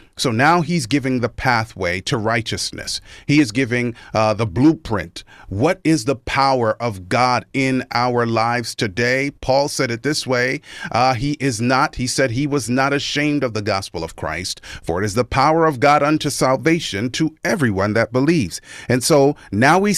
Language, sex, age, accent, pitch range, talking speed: English, male, 40-59, American, 120-165 Hz, 185 wpm